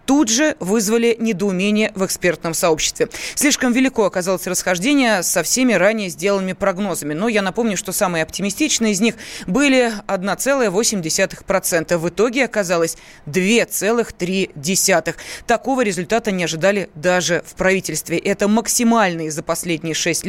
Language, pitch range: Russian, 185-255 Hz